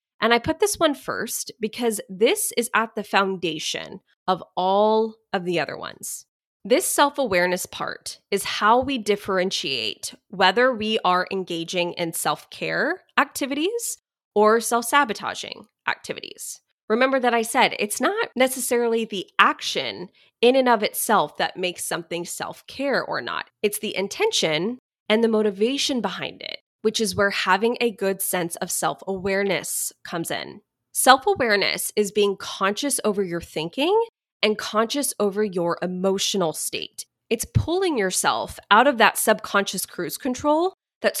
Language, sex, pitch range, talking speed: English, female, 190-250 Hz, 140 wpm